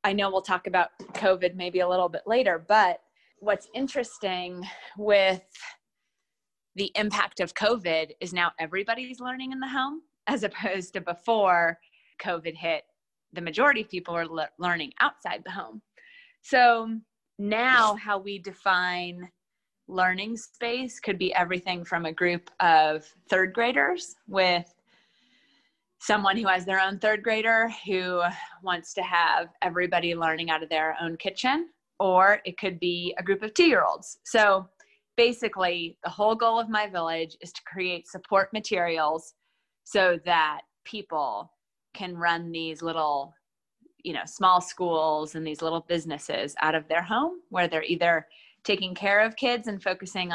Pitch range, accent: 170-225 Hz, American